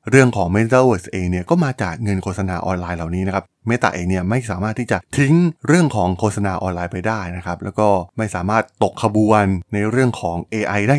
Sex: male